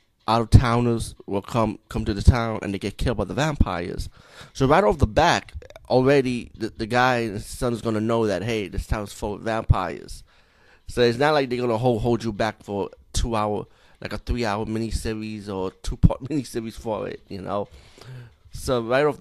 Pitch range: 100-115 Hz